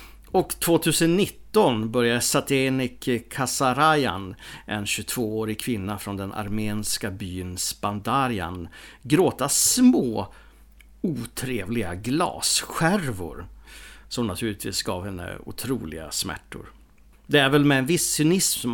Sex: male